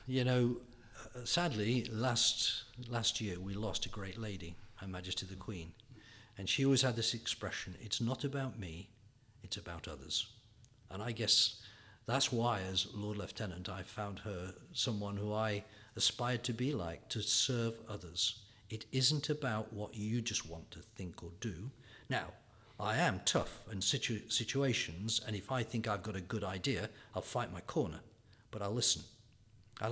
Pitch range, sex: 100-120 Hz, male